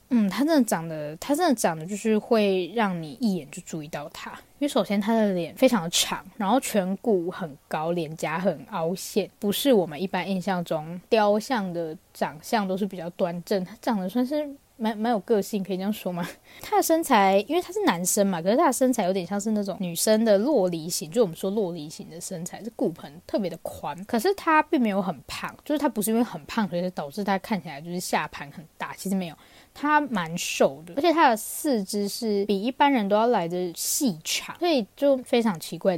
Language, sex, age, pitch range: Chinese, female, 20-39, 185-245 Hz